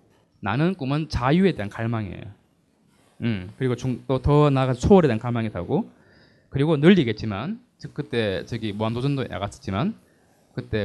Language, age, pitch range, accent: Korean, 20-39, 110-165 Hz, native